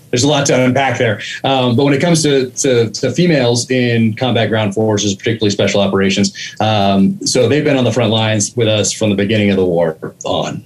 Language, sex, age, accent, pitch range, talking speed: English, male, 30-49, American, 100-125 Hz, 220 wpm